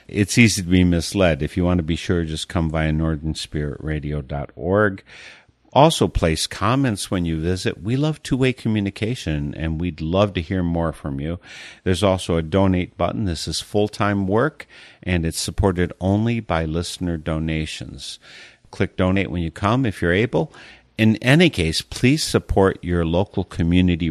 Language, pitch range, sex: English, 80-95 Hz, male